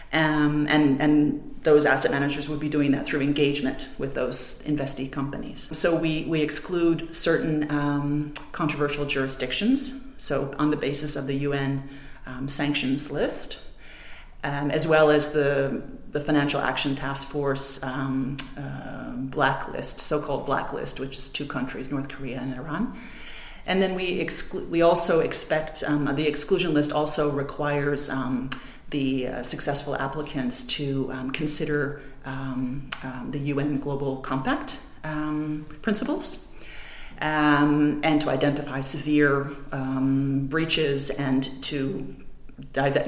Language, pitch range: English, 135-155 Hz